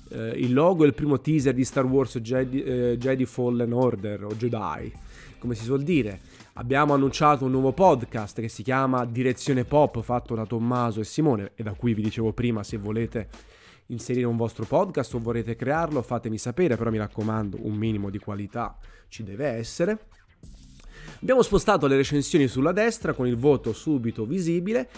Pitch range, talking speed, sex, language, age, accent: 115-150 Hz, 175 wpm, male, Italian, 30-49, native